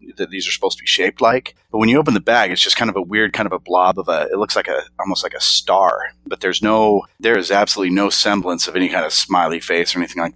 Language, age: English, 30-49